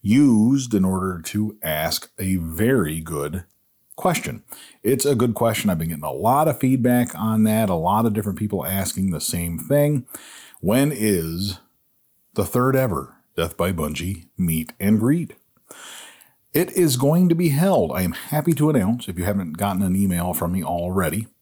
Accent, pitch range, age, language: American, 85-120 Hz, 40-59, English